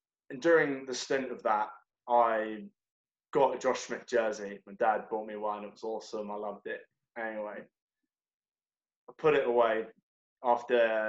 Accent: British